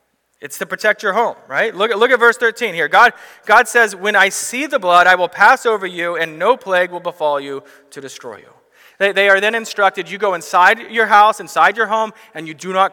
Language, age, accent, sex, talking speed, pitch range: English, 30-49, American, male, 235 wpm, 150-195 Hz